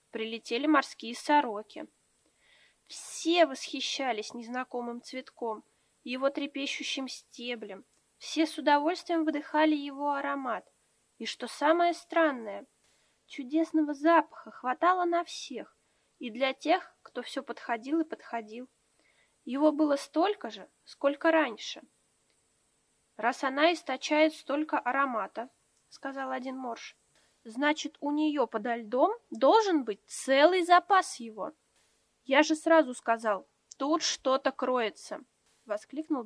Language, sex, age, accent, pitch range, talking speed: Russian, female, 20-39, native, 245-320 Hz, 110 wpm